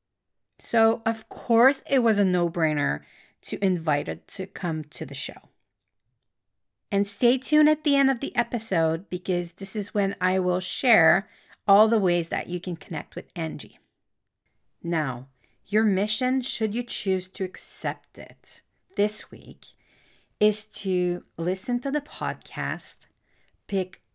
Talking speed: 145 wpm